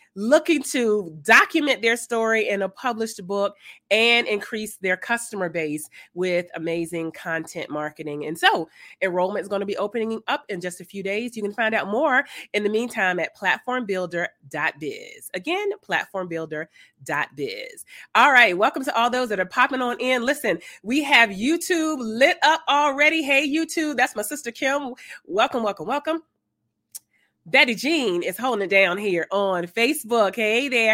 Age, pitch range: 30-49, 185-270 Hz